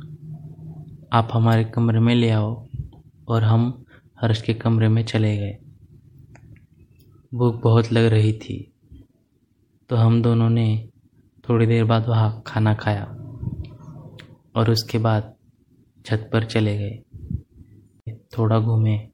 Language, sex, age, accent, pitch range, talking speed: Hindi, male, 20-39, native, 110-125 Hz, 120 wpm